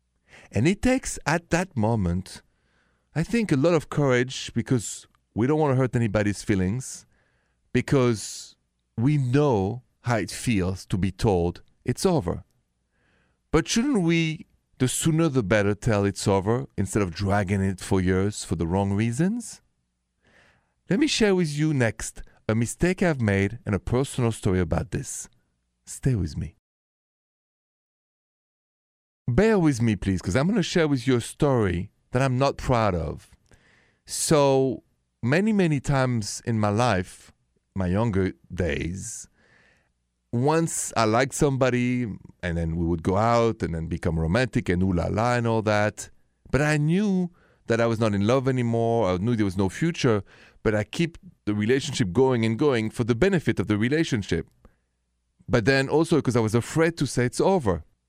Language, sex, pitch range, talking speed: English, male, 95-135 Hz, 165 wpm